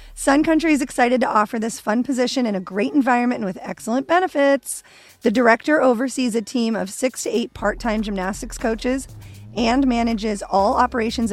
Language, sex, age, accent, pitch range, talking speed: English, female, 30-49, American, 200-265 Hz, 175 wpm